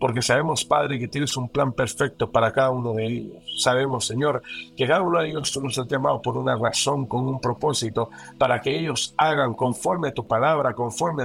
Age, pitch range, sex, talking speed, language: 60-79, 110-140 Hz, male, 205 wpm, English